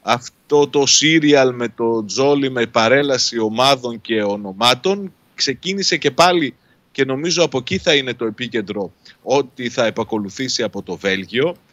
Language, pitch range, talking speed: Greek, 120-155 Hz, 145 wpm